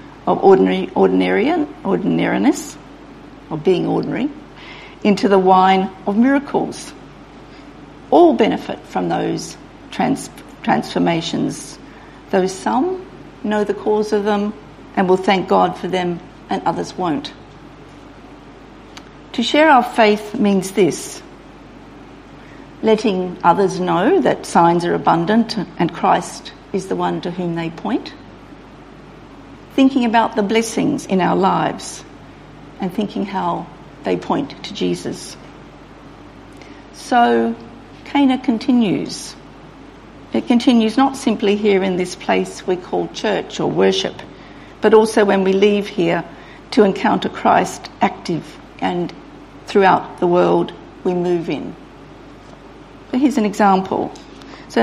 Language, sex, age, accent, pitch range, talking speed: English, female, 50-69, Australian, 175-225 Hz, 115 wpm